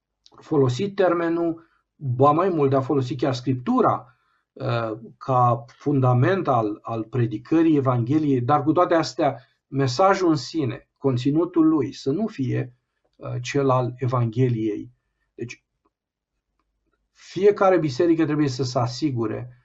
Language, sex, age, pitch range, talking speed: Romanian, male, 50-69, 120-150 Hz, 115 wpm